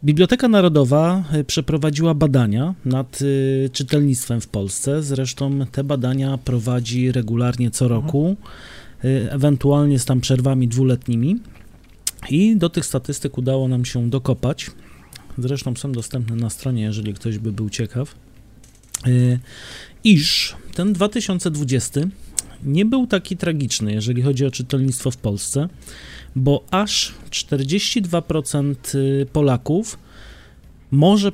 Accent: native